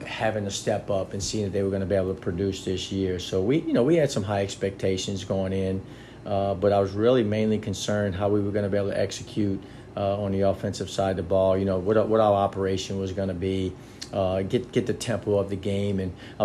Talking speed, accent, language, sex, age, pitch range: 265 wpm, American, English, male, 40-59, 95-110 Hz